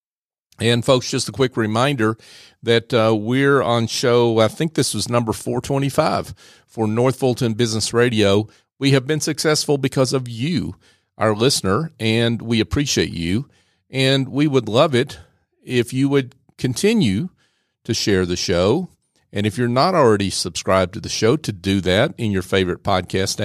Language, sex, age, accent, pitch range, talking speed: English, male, 50-69, American, 100-135 Hz, 165 wpm